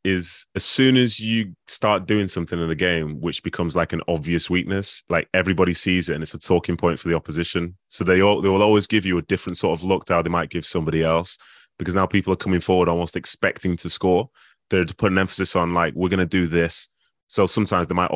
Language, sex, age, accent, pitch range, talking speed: English, male, 20-39, British, 85-95 Hz, 245 wpm